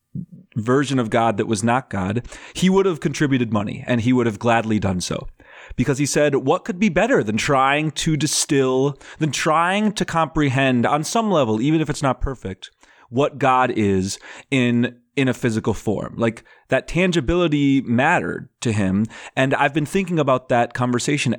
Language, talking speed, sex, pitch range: English, 175 wpm, male, 120-160 Hz